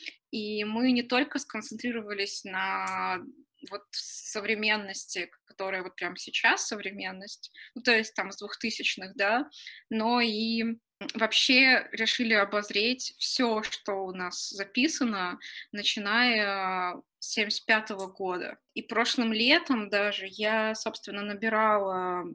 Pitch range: 200-235 Hz